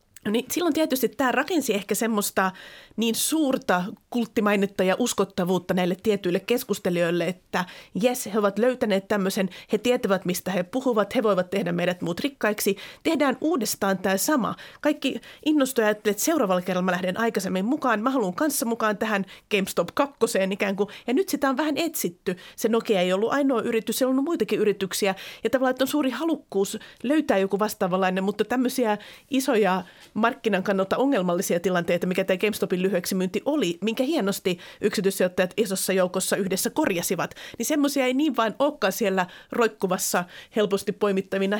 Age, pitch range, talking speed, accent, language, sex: 30-49, 190-245 Hz, 155 wpm, native, Finnish, female